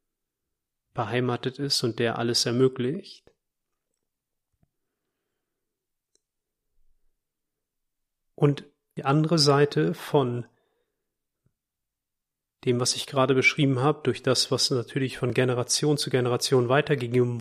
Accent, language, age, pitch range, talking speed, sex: German, German, 40-59, 125-155 Hz, 90 wpm, male